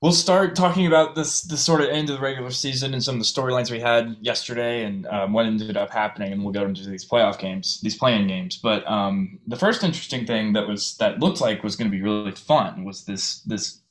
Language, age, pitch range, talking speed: English, 20-39, 100-130 Hz, 240 wpm